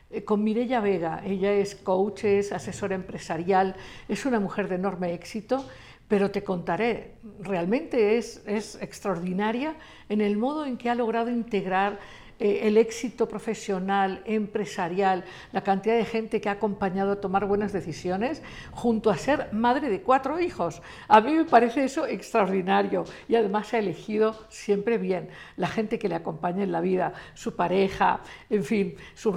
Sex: female